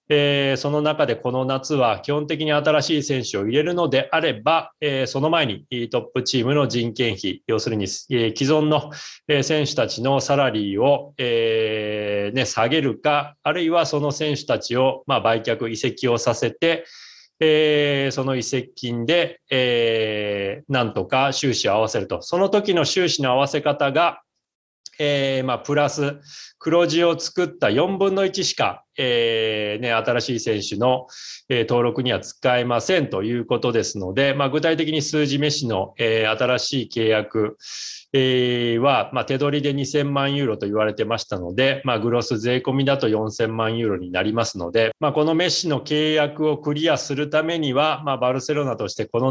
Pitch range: 115-150 Hz